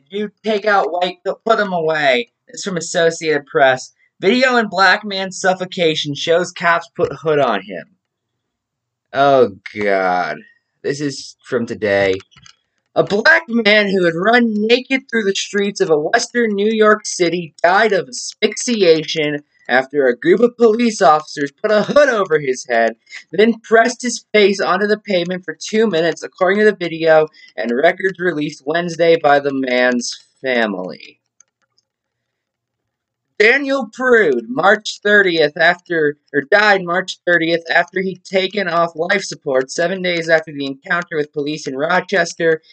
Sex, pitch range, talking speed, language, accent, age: male, 145-200 Hz, 150 wpm, English, American, 20-39